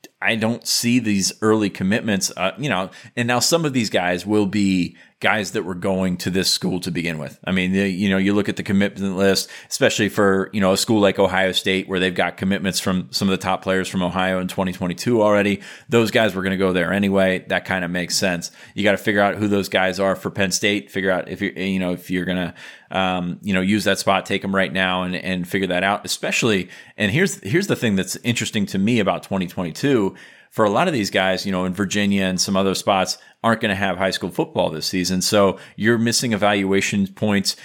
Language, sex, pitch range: English, male, 95-105 Hz